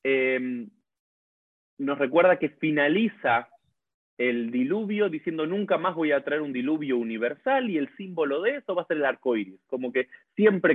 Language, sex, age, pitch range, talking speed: Spanish, male, 30-49, 130-210 Hz, 160 wpm